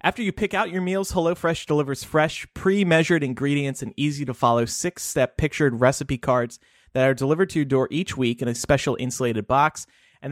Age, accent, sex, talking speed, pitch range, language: 30-49, American, male, 180 wpm, 130-180 Hz, English